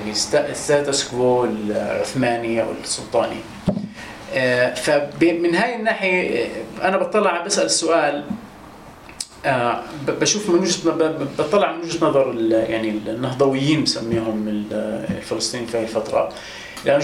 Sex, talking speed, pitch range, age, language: male, 105 wpm, 115-170 Hz, 30-49, English